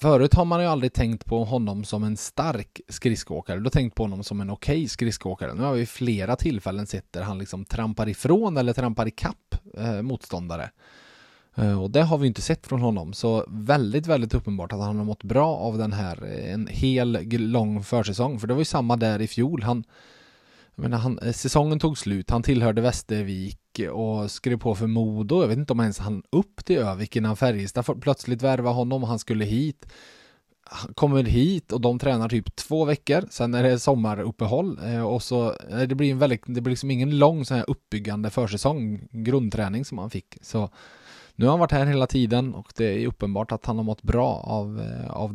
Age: 20-39